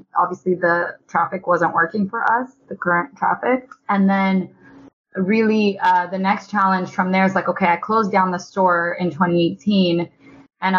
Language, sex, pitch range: English, female, 170-190 Hz